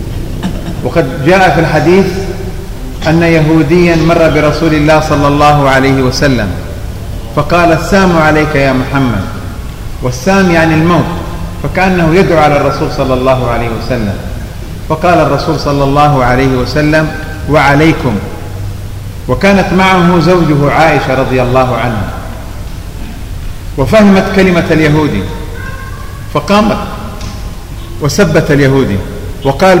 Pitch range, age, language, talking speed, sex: 105-160 Hz, 40-59, English, 100 wpm, male